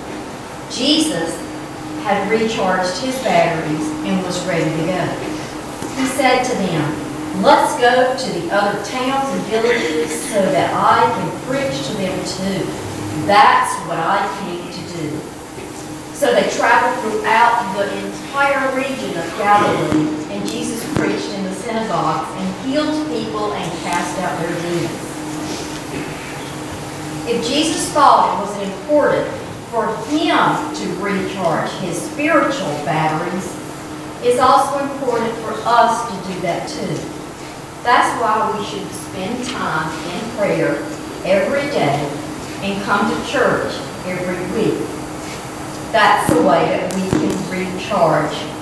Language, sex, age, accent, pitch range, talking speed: English, female, 50-69, American, 165-255 Hz, 130 wpm